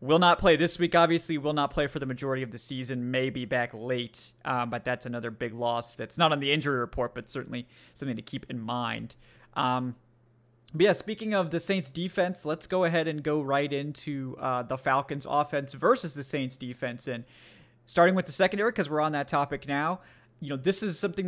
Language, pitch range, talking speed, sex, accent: English, 125-155 Hz, 215 wpm, male, American